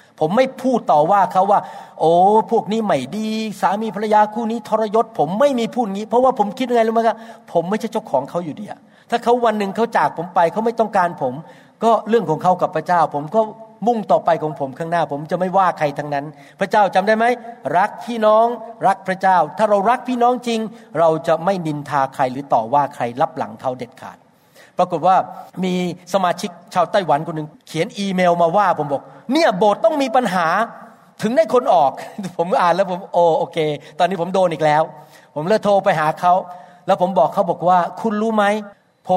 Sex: male